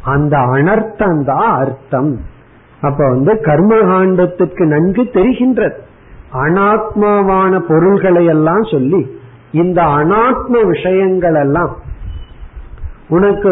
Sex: male